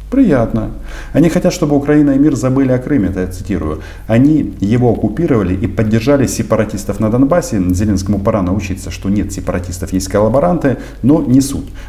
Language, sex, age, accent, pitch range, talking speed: Russian, male, 50-69, native, 90-110 Hz, 160 wpm